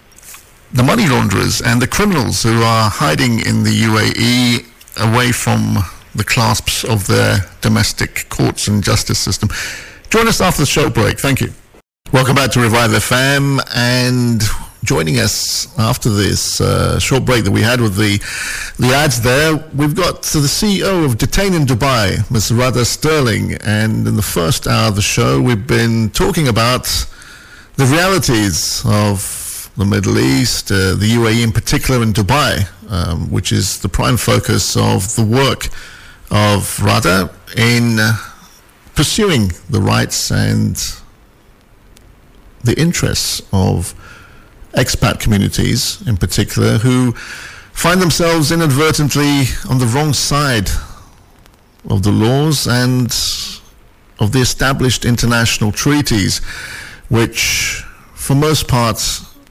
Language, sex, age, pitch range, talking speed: English, male, 50-69, 105-125 Hz, 135 wpm